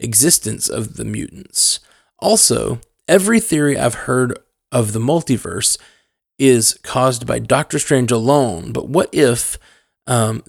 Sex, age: male, 20-39